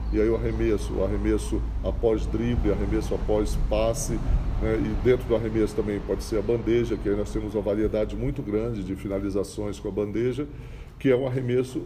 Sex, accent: male, Brazilian